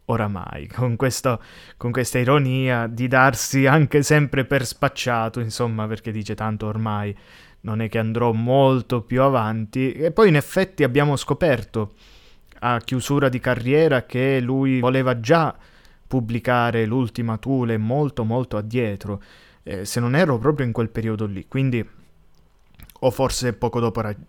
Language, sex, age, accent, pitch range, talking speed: Italian, male, 20-39, native, 110-135 Hz, 145 wpm